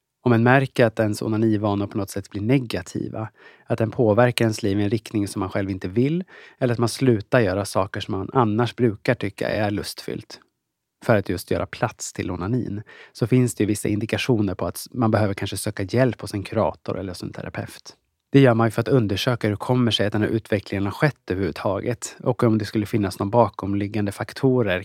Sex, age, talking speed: male, 30-49, 205 wpm